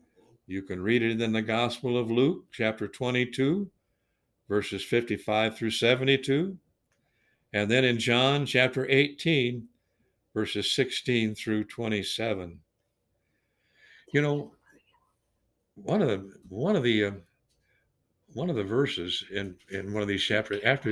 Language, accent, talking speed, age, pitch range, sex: English, American, 130 wpm, 60-79, 100-130 Hz, male